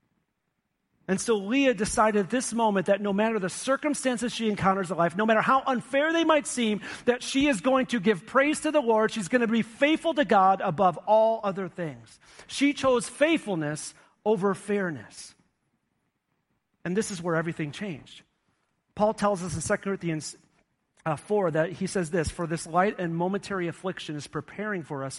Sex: male